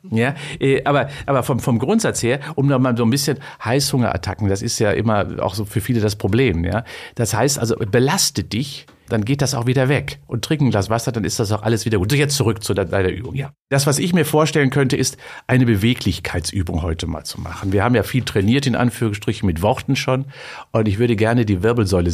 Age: 50-69